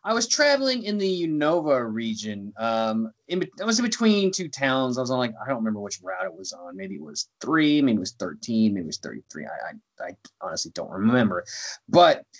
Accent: American